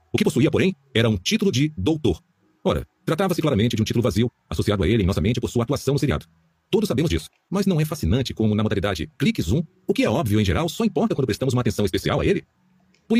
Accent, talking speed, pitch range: Brazilian, 250 wpm, 105-155 Hz